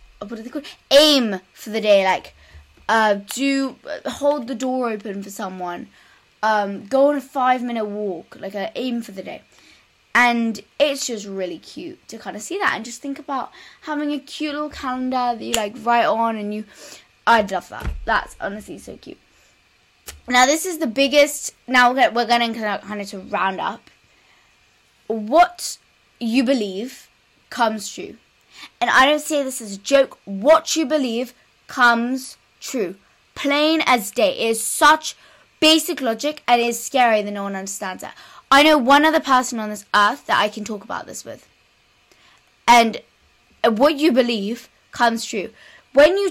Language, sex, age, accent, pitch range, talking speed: English, female, 10-29, British, 215-295 Hz, 180 wpm